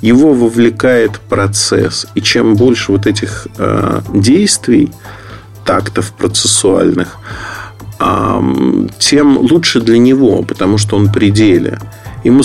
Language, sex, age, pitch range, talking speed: Russian, male, 40-59, 100-115 Hz, 110 wpm